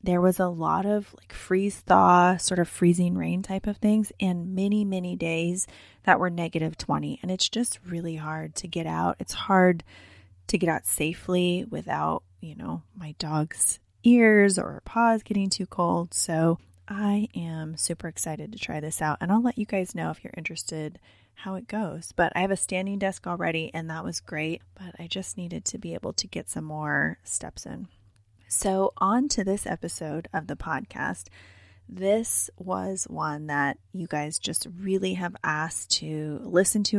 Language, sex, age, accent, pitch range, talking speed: English, female, 20-39, American, 155-190 Hz, 185 wpm